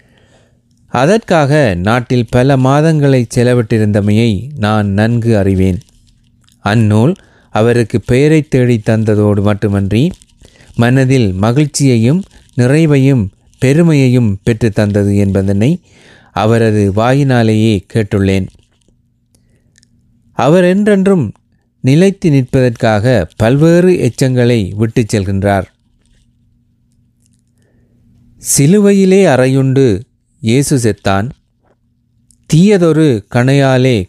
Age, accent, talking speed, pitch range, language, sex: 30-49, native, 65 wpm, 110-135 Hz, Tamil, male